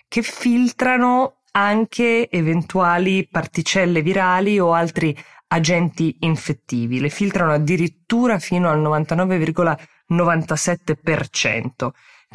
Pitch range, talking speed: 135-175 Hz, 80 wpm